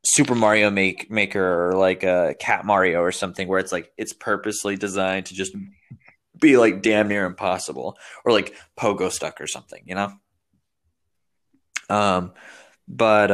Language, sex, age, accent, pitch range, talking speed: English, male, 20-39, American, 95-105 Hz, 150 wpm